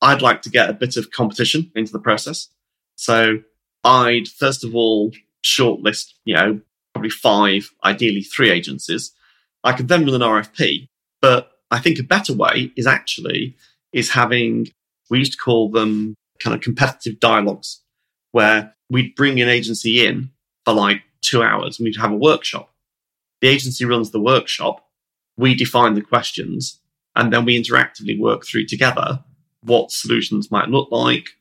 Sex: male